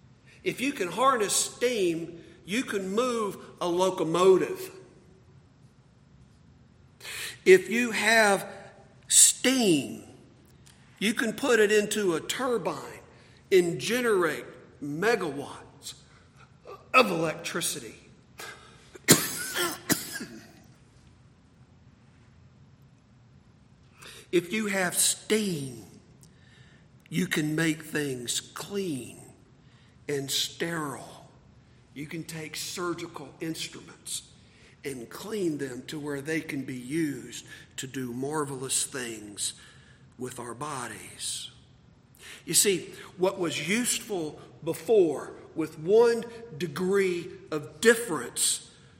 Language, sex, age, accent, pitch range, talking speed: English, male, 50-69, American, 135-210 Hz, 85 wpm